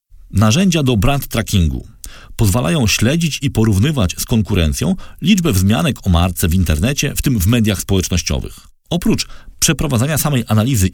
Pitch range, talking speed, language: 90-130 Hz, 135 wpm, Polish